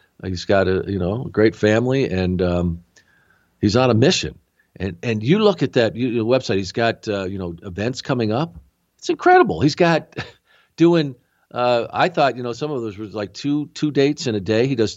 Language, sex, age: English, male, 50-69